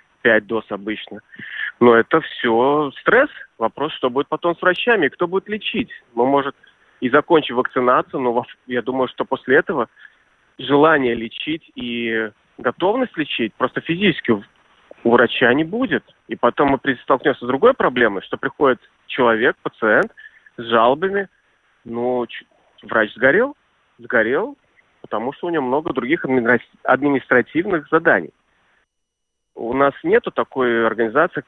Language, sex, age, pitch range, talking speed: Russian, male, 30-49, 115-165 Hz, 130 wpm